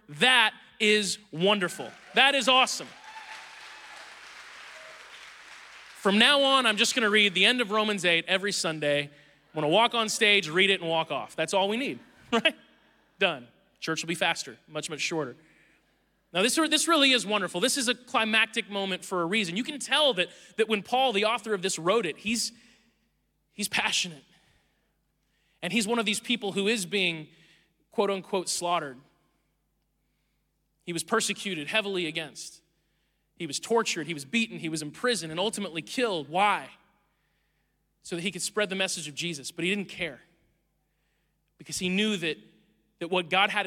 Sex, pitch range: male, 165-225 Hz